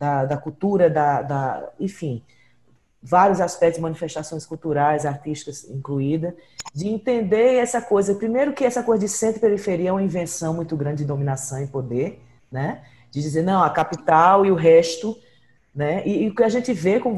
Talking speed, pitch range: 180 wpm, 155-205 Hz